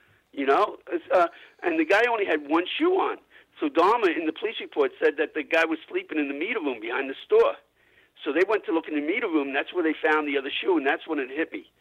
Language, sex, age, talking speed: English, male, 50-69, 265 wpm